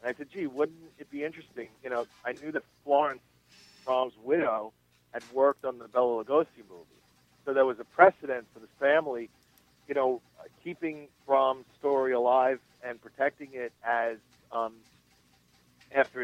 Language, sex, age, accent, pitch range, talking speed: English, male, 50-69, American, 110-140 Hz, 165 wpm